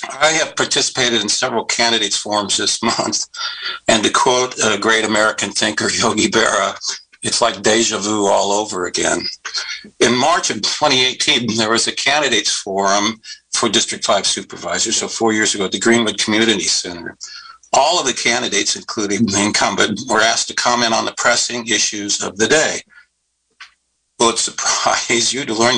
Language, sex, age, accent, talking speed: English, male, 60-79, American, 165 wpm